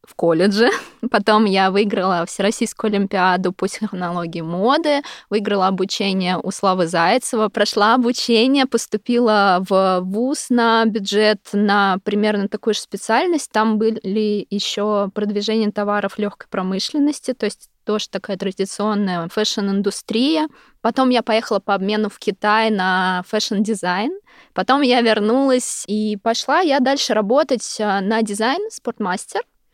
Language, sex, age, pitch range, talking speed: Russian, female, 20-39, 205-255 Hz, 120 wpm